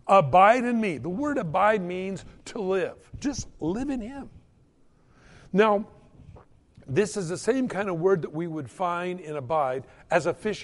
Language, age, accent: English, 60-79, American